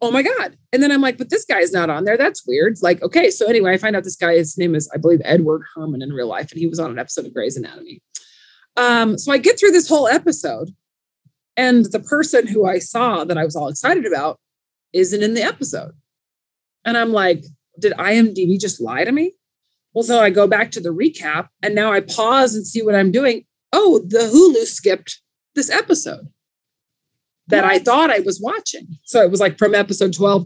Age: 20-39